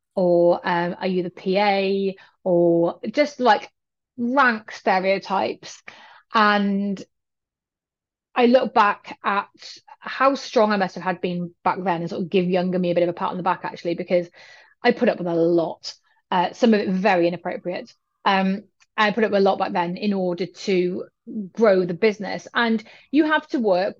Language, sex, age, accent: English, female, 30-49, British